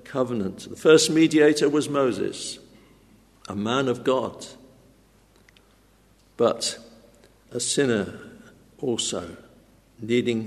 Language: English